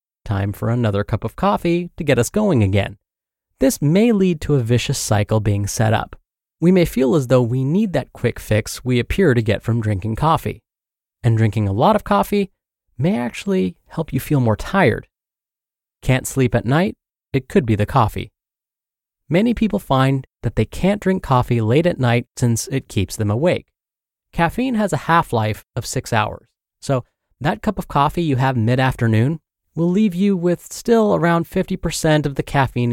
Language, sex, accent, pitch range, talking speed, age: English, male, American, 115-170 Hz, 185 wpm, 30-49